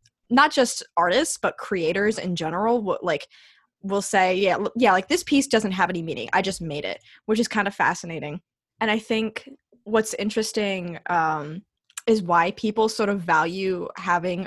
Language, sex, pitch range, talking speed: English, female, 175-225 Hz, 175 wpm